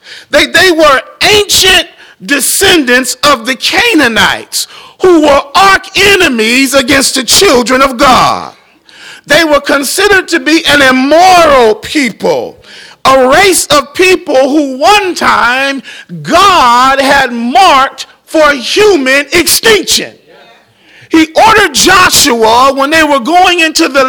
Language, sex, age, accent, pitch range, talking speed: English, male, 40-59, American, 260-355 Hz, 115 wpm